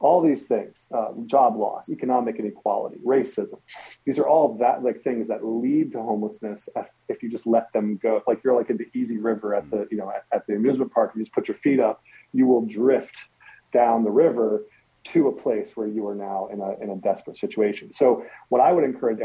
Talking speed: 230 wpm